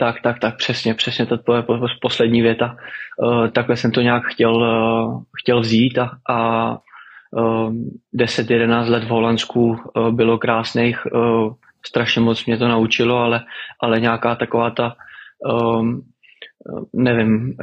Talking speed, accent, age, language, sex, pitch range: 125 wpm, native, 20-39, Czech, male, 115-120 Hz